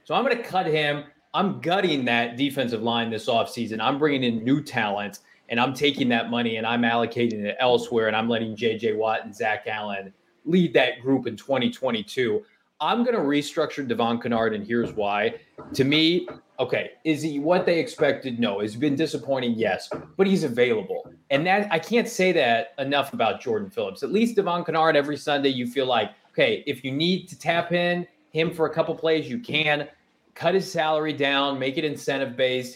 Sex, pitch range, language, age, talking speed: male, 120-155 Hz, English, 20-39, 195 wpm